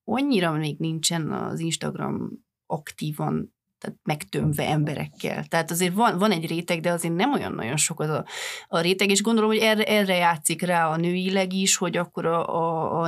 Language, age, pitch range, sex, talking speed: Hungarian, 30-49, 155-190 Hz, female, 185 wpm